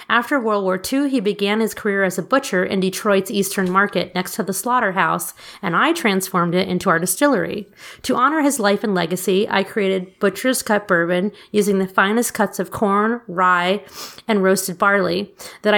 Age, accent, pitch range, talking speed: 30-49, American, 185-230 Hz, 185 wpm